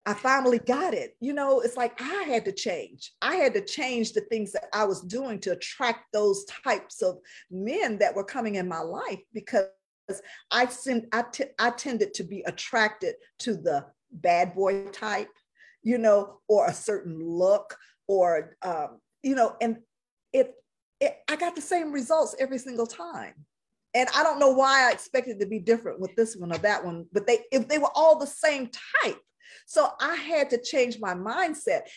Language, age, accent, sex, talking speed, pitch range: English, 50-69, American, female, 190 wpm, 195-265 Hz